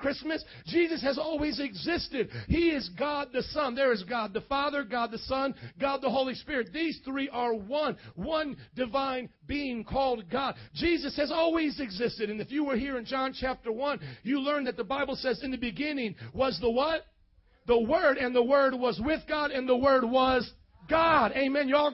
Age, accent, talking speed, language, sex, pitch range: 40-59, American, 195 wpm, English, male, 245-300 Hz